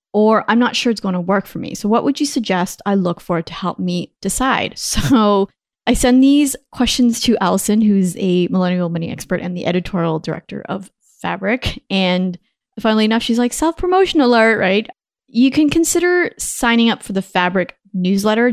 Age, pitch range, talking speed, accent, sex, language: 20-39, 185-235 Hz, 185 wpm, American, female, English